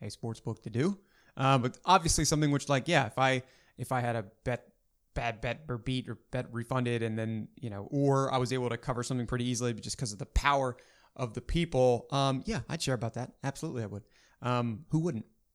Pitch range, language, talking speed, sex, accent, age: 125-155 Hz, English, 230 wpm, male, American, 30-49